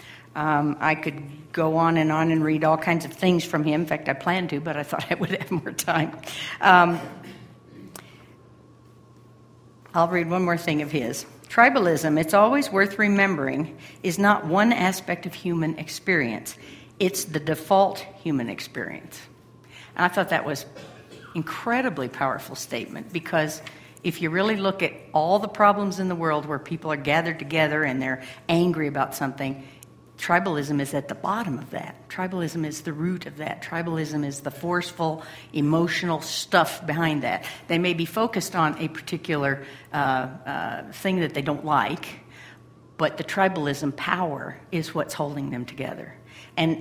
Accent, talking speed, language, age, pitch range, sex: American, 165 wpm, English, 60-79, 150-180 Hz, female